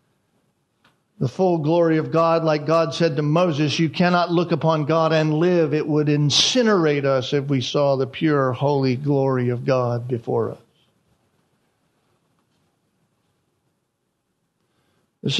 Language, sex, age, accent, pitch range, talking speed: English, male, 50-69, American, 150-220 Hz, 130 wpm